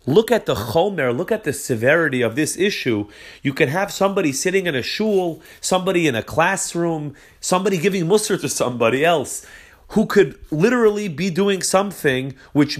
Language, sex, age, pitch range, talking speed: English, male, 30-49, 130-175 Hz, 170 wpm